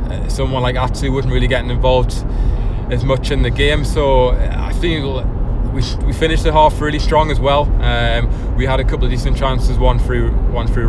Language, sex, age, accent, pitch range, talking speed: English, male, 20-39, British, 115-130 Hz, 200 wpm